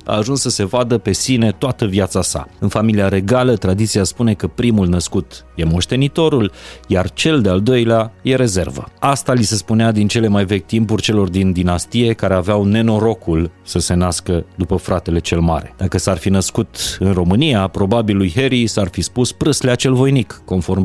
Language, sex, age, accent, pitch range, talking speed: Romanian, male, 30-49, native, 95-115 Hz, 185 wpm